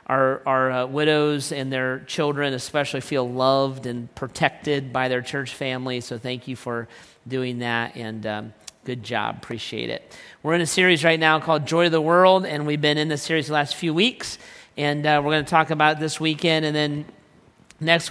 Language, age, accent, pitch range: English, 40-59, American, 135-155 Hz